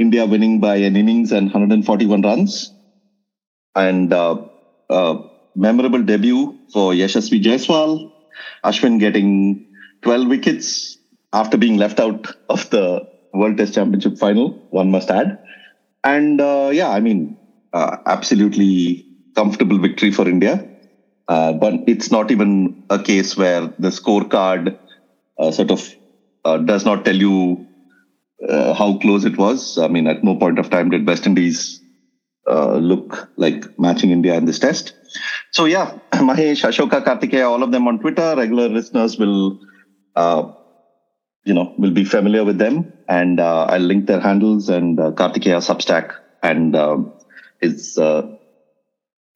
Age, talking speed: 30-49, 145 wpm